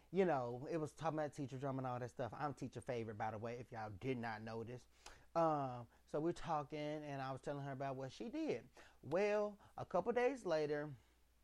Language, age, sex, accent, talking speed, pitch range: English, 30-49, male, American, 220 wpm, 130-195 Hz